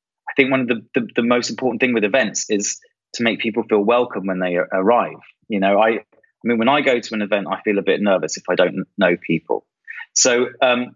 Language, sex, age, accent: English, male, 20-39, British